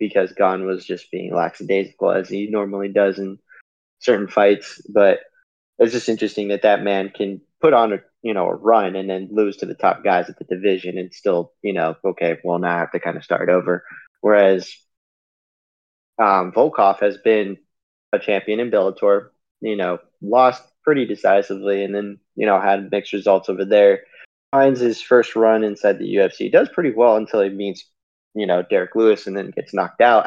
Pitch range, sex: 100-115 Hz, male